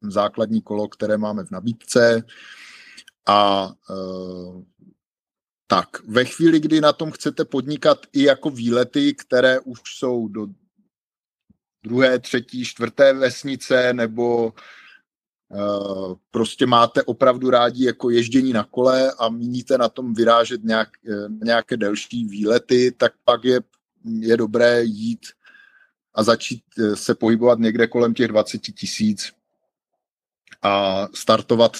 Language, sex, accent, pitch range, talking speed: Czech, male, native, 110-130 Hz, 120 wpm